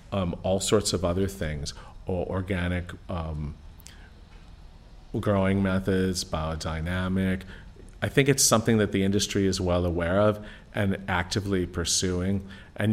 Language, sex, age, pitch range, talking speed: English, male, 40-59, 85-100 Hz, 120 wpm